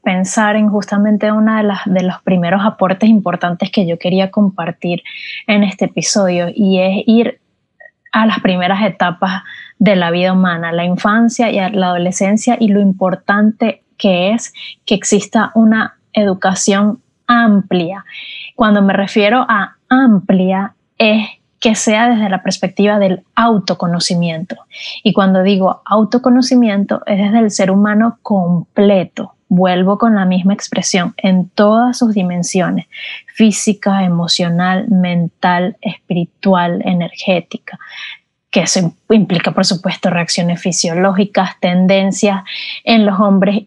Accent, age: American, 20-39